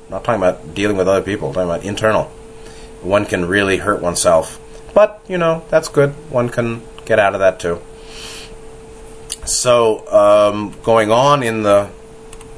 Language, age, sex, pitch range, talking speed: English, 30-49, male, 95-115 Hz, 155 wpm